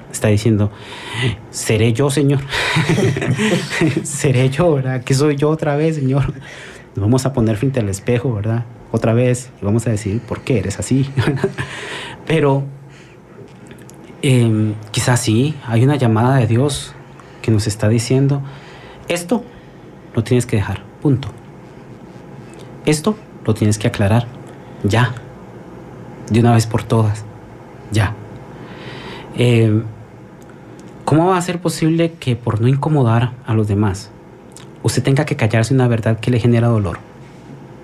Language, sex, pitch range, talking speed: Spanish, male, 115-145 Hz, 135 wpm